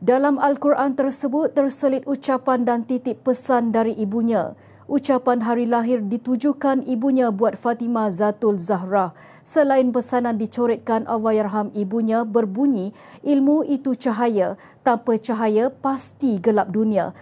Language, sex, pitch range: Malay, female, 220-265 Hz